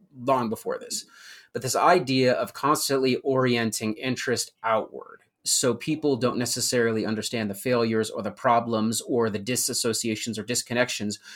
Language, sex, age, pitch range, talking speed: English, male, 30-49, 110-130 Hz, 135 wpm